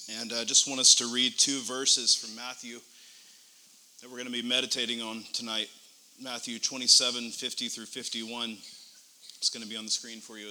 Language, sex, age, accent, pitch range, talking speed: English, male, 30-49, American, 120-145 Hz, 190 wpm